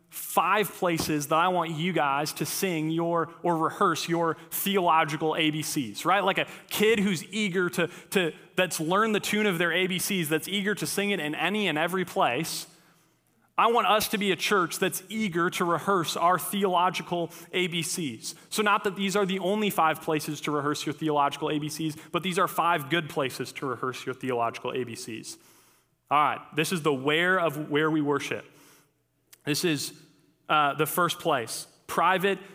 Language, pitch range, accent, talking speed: English, 155-185 Hz, American, 175 wpm